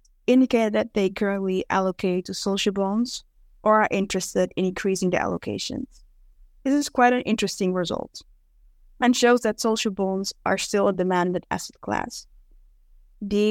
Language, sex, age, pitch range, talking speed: English, female, 20-39, 185-220 Hz, 145 wpm